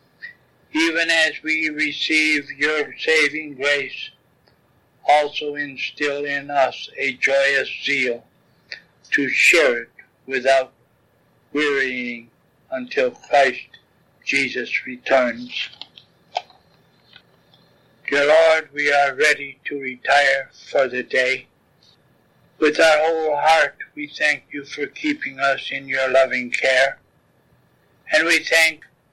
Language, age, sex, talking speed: English, 60-79, male, 105 wpm